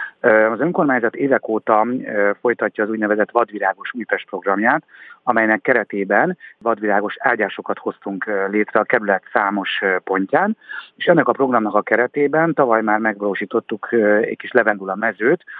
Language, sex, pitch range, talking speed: Hungarian, male, 100-120 Hz, 125 wpm